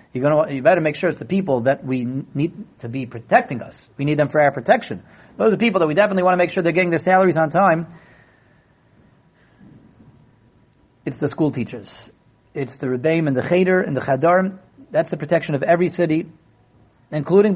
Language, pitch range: English, 160-210 Hz